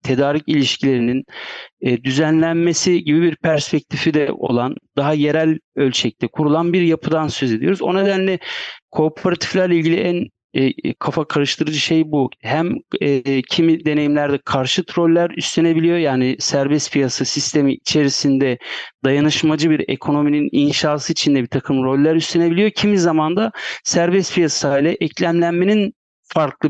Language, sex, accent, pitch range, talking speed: Turkish, male, native, 135-165 Hz, 120 wpm